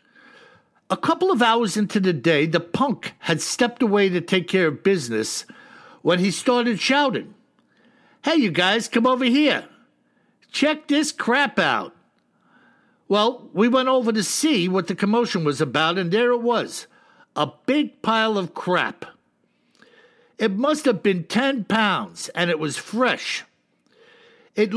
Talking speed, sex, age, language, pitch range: 150 wpm, male, 60-79, English, 175-250 Hz